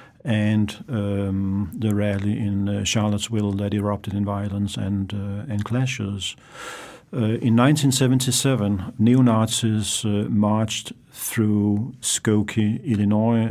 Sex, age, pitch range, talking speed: male, 50-69, 105-120 Hz, 100 wpm